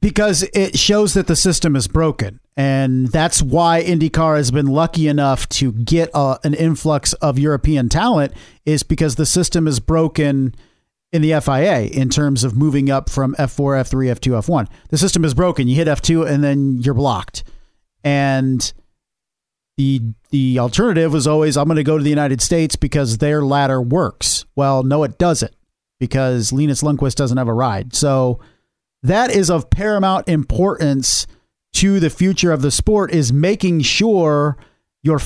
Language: English